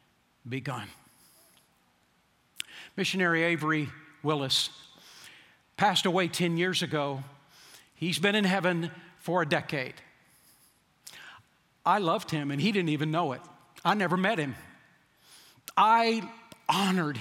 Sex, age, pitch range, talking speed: male, 50-69, 165-200 Hz, 110 wpm